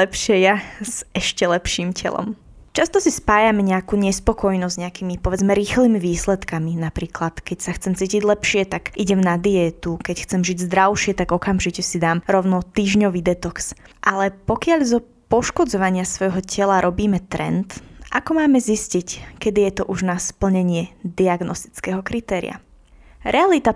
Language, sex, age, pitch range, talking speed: Slovak, female, 20-39, 185-215 Hz, 145 wpm